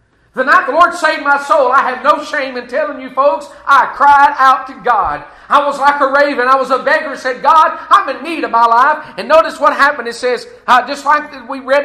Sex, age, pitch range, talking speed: male, 40-59, 255-300 Hz, 250 wpm